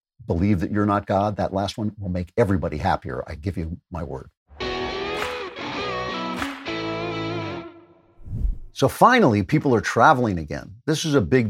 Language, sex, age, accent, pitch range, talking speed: English, male, 50-69, American, 95-130 Hz, 140 wpm